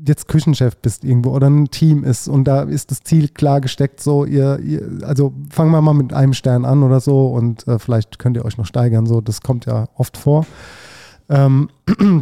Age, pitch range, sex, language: 30-49, 135-155 Hz, male, German